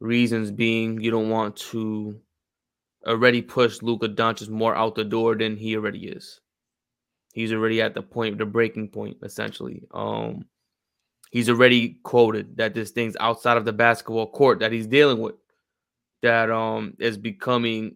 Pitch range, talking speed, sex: 110-120 Hz, 155 wpm, male